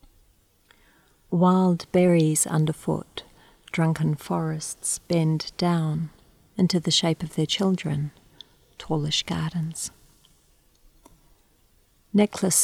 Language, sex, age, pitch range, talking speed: English, female, 40-59, 155-170 Hz, 75 wpm